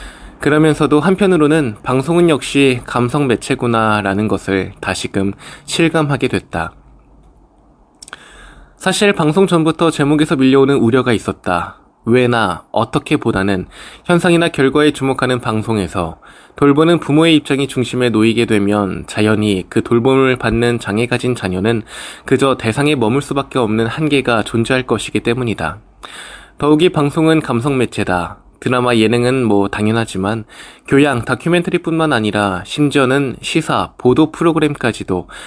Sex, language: male, Korean